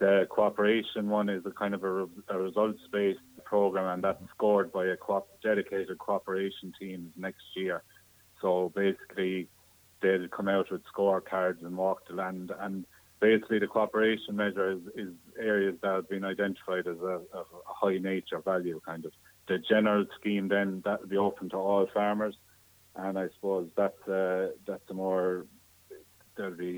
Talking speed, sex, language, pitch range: 160 wpm, male, English, 90-100 Hz